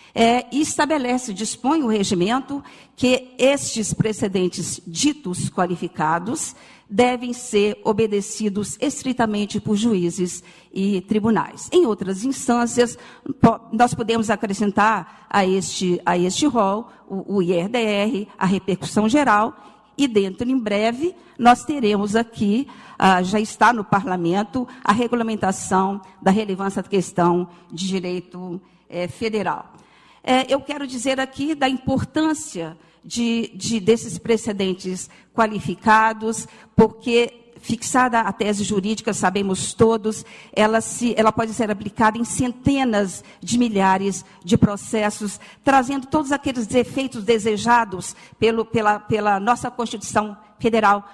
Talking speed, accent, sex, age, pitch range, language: 105 wpm, Brazilian, female, 50-69, 195-240 Hz, Portuguese